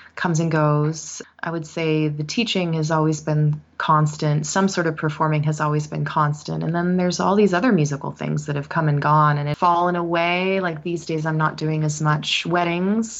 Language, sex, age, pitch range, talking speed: English, female, 20-39, 145-165 Hz, 210 wpm